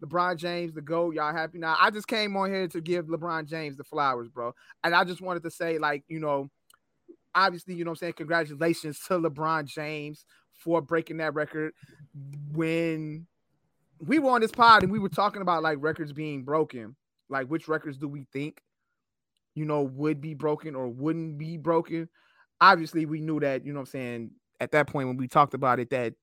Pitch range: 150-185 Hz